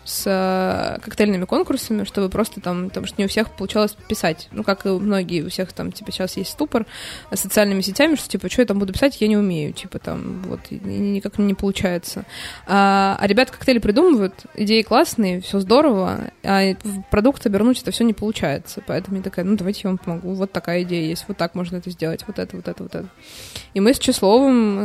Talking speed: 210 wpm